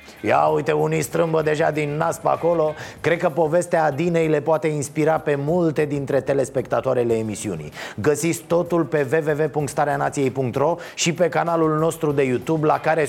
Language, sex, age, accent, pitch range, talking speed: Romanian, male, 30-49, native, 145-170 Hz, 150 wpm